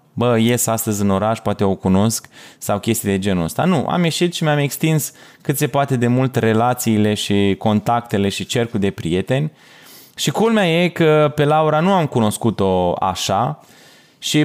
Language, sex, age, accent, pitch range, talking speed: Romanian, male, 20-39, native, 110-150 Hz, 175 wpm